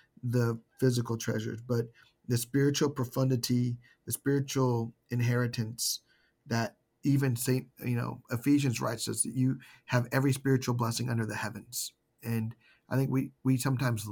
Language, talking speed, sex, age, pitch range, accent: English, 140 wpm, male, 40-59, 115-135 Hz, American